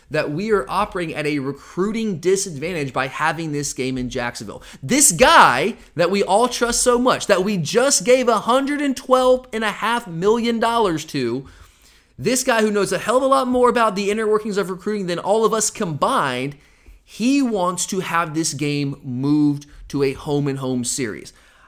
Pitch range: 150-215 Hz